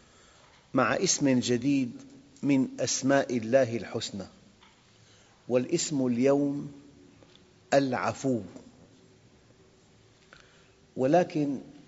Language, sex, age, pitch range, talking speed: Arabic, male, 50-69, 115-145 Hz, 55 wpm